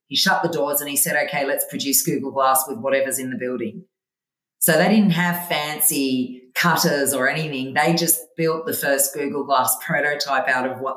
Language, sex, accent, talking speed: English, female, Australian, 195 wpm